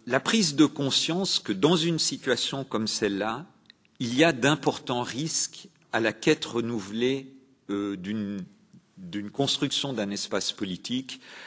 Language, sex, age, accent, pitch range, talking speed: French, male, 50-69, French, 100-145 Hz, 125 wpm